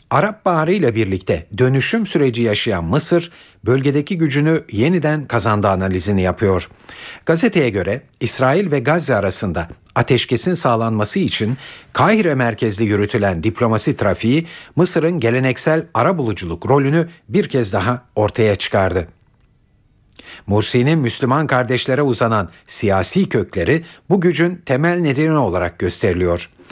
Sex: male